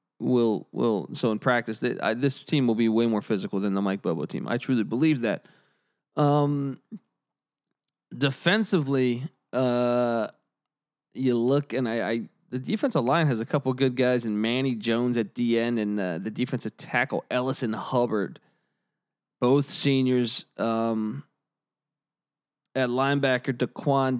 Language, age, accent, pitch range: English, 20-39, American, 115-145 Hz